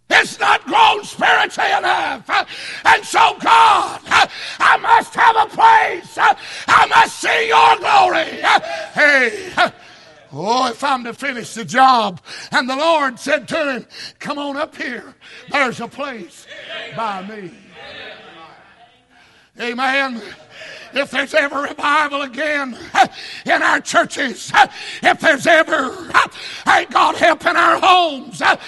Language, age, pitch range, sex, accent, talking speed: English, 60-79, 280-400 Hz, male, American, 130 wpm